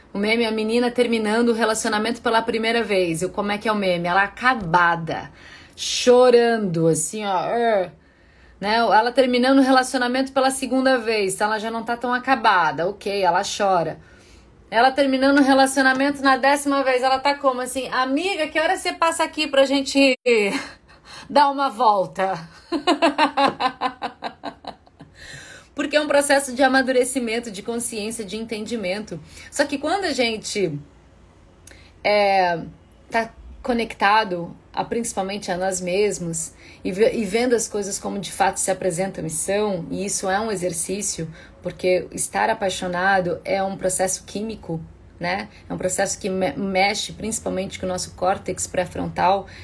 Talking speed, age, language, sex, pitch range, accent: 150 wpm, 30-49, Portuguese, female, 185-245 Hz, Brazilian